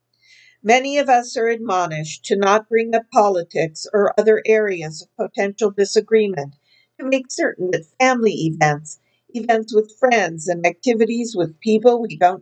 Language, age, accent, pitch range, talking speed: English, 50-69, American, 165-230 Hz, 150 wpm